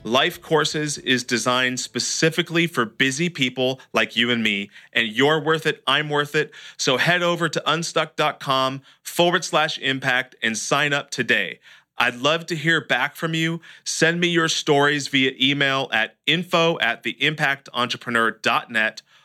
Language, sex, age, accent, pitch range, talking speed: English, male, 40-59, American, 120-155 Hz, 150 wpm